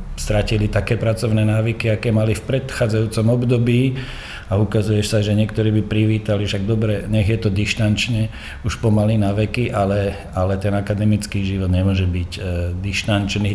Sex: male